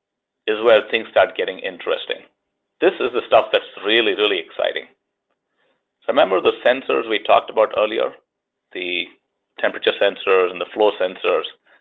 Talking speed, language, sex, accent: 145 wpm, English, male, Indian